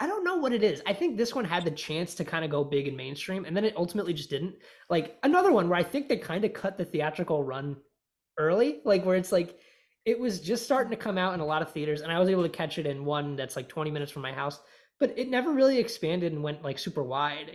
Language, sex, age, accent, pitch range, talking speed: English, male, 20-39, American, 150-195 Hz, 280 wpm